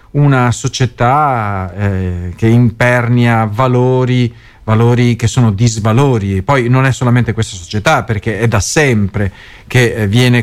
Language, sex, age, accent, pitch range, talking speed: Italian, male, 40-59, native, 105-150 Hz, 125 wpm